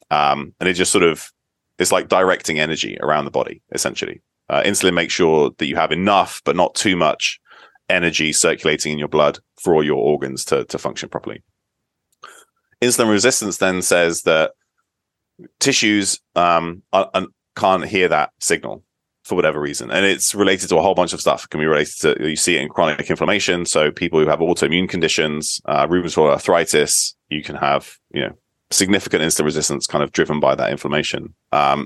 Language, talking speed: English, 185 wpm